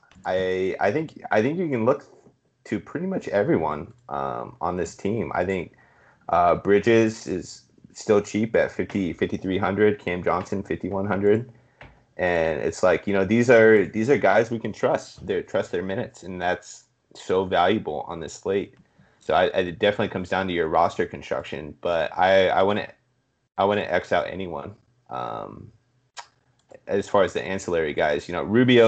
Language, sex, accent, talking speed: English, male, American, 175 wpm